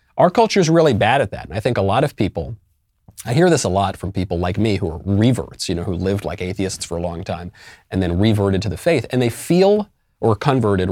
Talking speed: 260 wpm